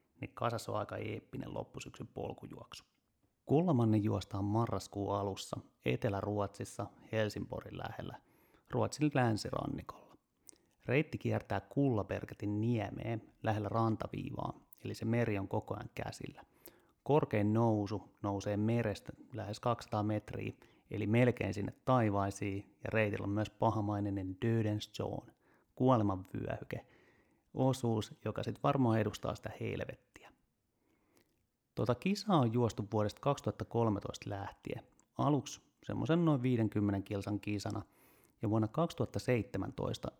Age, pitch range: 30-49, 105-125 Hz